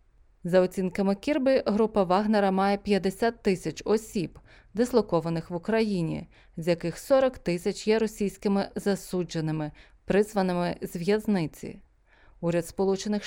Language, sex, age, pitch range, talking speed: Ukrainian, female, 20-39, 165-210 Hz, 110 wpm